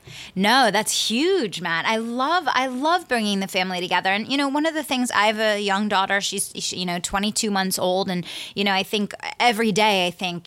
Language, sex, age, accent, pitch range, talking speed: English, female, 20-39, American, 175-215 Hz, 230 wpm